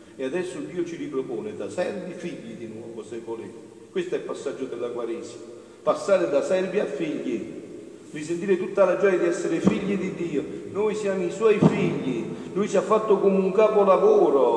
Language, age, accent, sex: Italian, 50-69, native, male